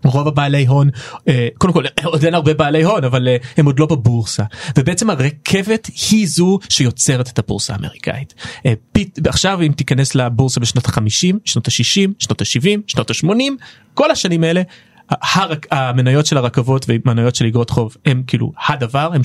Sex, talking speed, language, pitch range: male, 155 wpm, Hebrew, 120-175 Hz